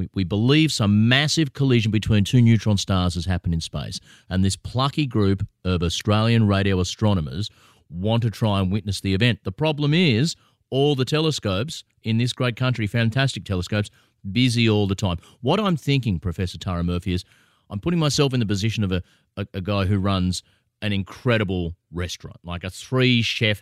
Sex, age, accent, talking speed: male, 30-49, Australian, 180 wpm